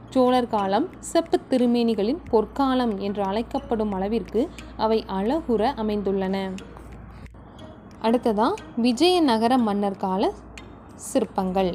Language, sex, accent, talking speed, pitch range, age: Tamil, female, native, 80 wpm, 205-270 Hz, 20-39